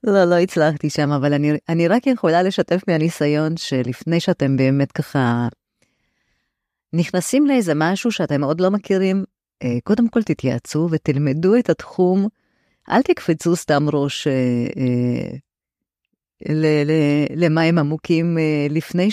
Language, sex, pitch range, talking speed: Hebrew, female, 150-195 Hz, 125 wpm